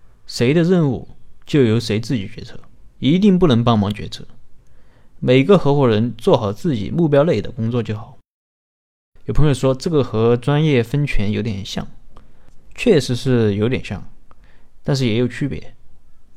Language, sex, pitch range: Chinese, male, 110-135 Hz